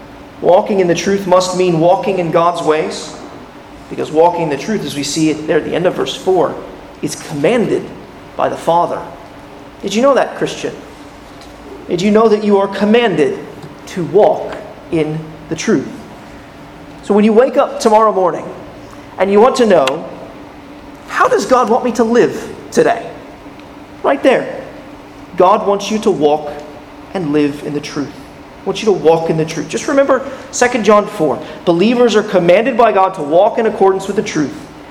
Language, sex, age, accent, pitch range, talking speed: English, male, 30-49, American, 160-215 Hz, 180 wpm